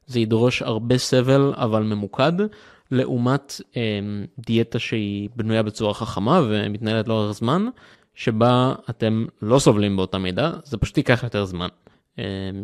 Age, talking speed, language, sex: 20-39, 135 wpm, Hebrew, male